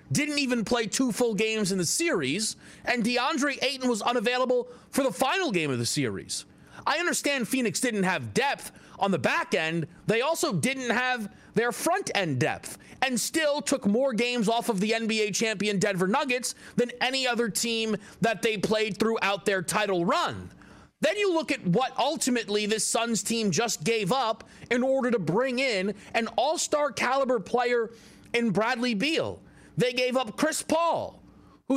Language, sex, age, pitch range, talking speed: English, male, 30-49, 220-280 Hz, 175 wpm